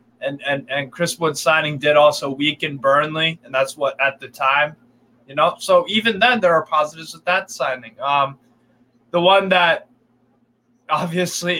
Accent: American